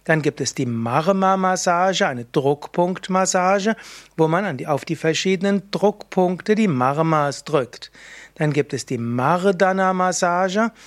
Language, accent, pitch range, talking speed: German, German, 140-185 Hz, 115 wpm